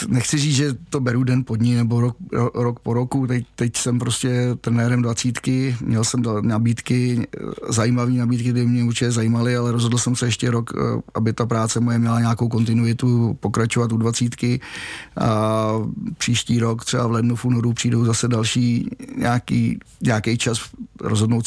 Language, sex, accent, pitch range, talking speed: Czech, male, native, 115-120 Hz, 160 wpm